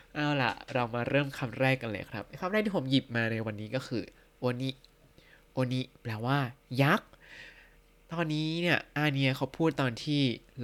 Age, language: 20-39, Thai